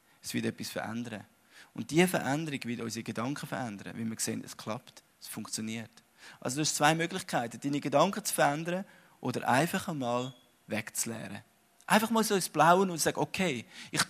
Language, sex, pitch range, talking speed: German, male, 130-180 Hz, 170 wpm